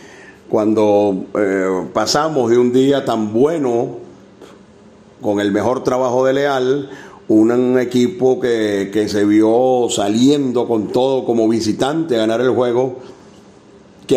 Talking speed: 130 wpm